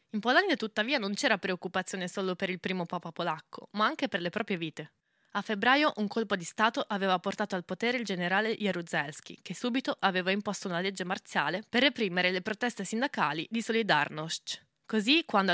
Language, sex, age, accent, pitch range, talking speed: Italian, female, 20-39, native, 185-230 Hz, 180 wpm